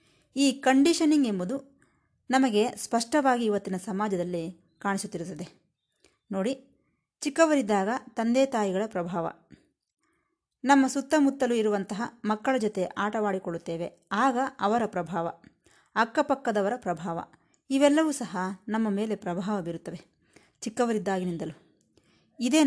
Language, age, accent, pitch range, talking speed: Kannada, 30-49, native, 180-250 Hz, 85 wpm